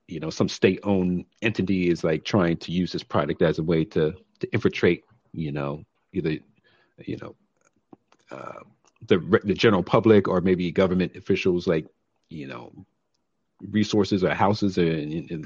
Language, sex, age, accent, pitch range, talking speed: English, male, 40-59, American, 80-95 Hz, 160 wpm